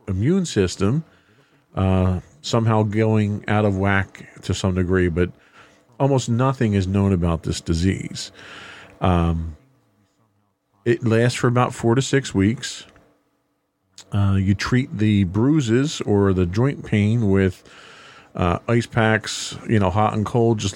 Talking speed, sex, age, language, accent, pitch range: 135 wpm, male, 40-59, English, American, 95-115 Hz